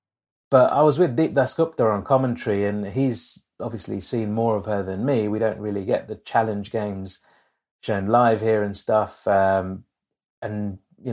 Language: English